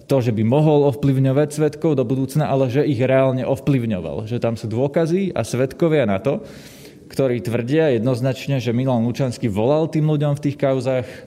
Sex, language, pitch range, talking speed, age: male, Slovak, 120-140 Hz, 175 wpm, 20-39